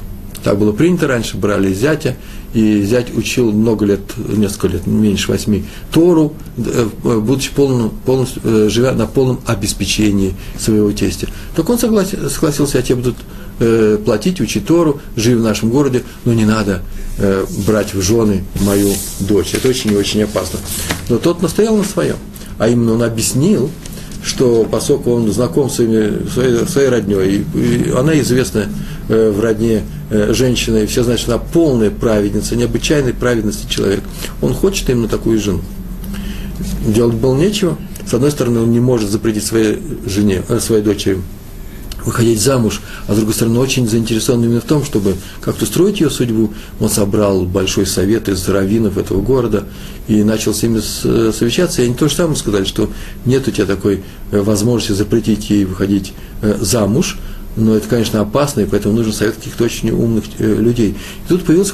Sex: male